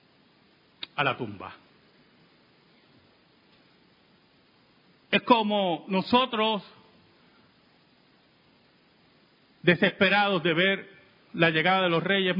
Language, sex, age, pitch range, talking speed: Spanish, male, 50-69, 150-240 Hz, 70 wpm